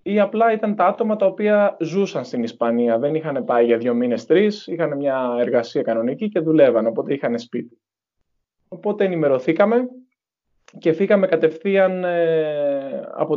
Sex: male